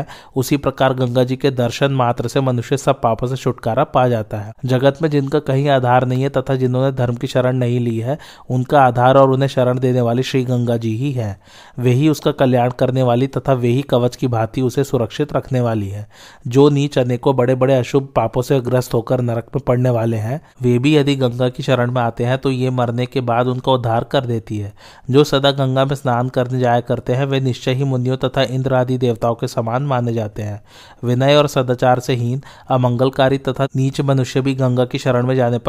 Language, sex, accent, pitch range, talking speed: Hindi, male, native, 120-135 Hz, 155 wpm